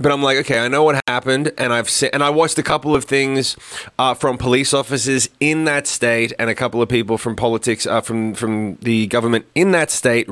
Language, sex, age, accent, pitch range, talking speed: English, male, 20-39, Australian, 120-150 Hz, 235 wpm